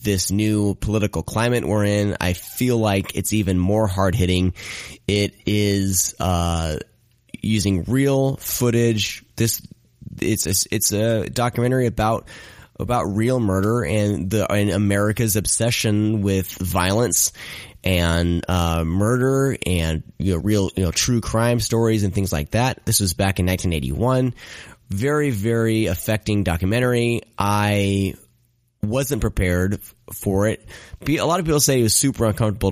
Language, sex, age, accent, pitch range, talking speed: English, male, 30-49, American, 95-115 Hz, 140 wpm